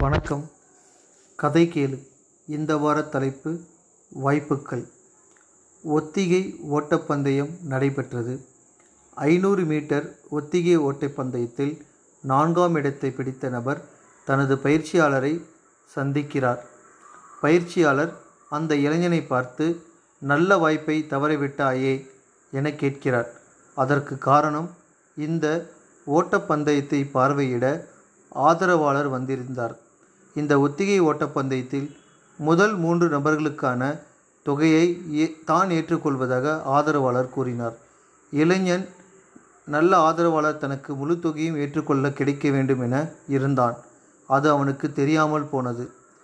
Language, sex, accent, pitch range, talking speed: Tamil, male, native, 135-165 Hz, 80 wpm